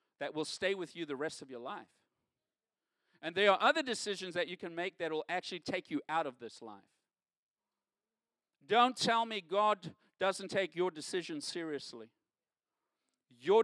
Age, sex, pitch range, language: 50-69, male, 165-230 Hz, English